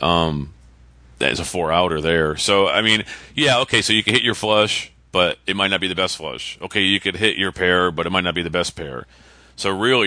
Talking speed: 245 wpm